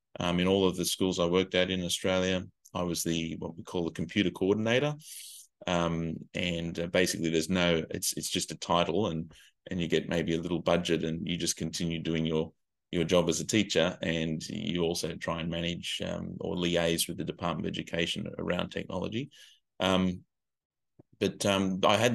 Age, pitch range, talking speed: 20-39, 85-95 Hz, 190 wpm